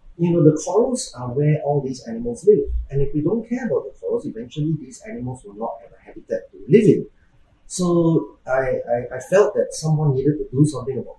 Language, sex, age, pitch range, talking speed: English, male, 30-49, 120-165 Hz, 220 wpm